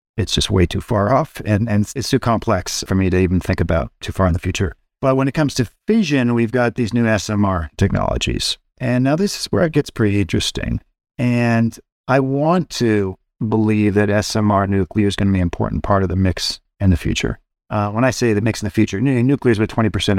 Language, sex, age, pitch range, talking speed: English, male, 40-59, 95-120 Hz, 225 wpm